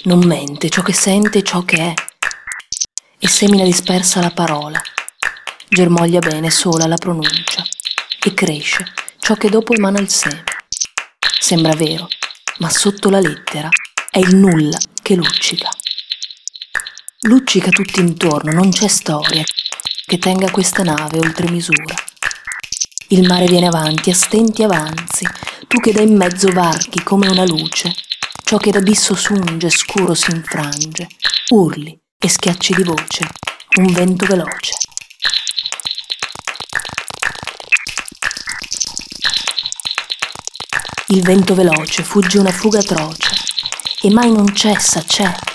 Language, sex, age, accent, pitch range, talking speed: Italian, female, 30-49, native, 170-200 Hz, 125 wpm